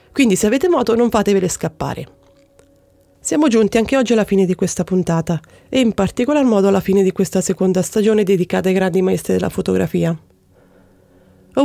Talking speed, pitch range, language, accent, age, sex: 170 wpm, 180-235 Hz, Italian, native, 30-49, female